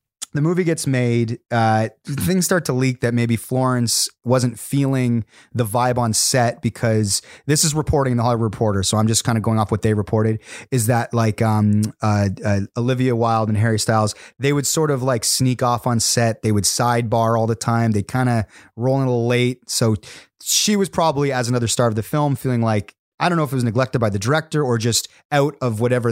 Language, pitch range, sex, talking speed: English, 110-130 Hz, male, 220 wpm